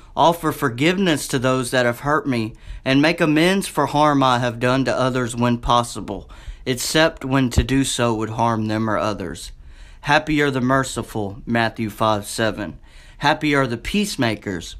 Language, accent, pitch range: English, American, 110-150 Hz